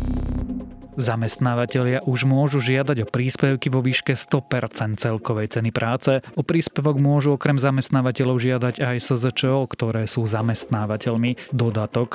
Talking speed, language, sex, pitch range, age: 120 wpm, Slovak, male, 115-135 Hz, 20-39